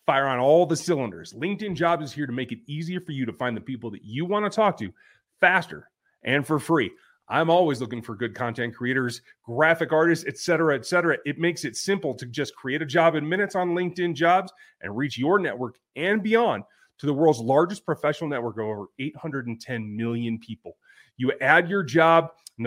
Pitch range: 135-175 Hz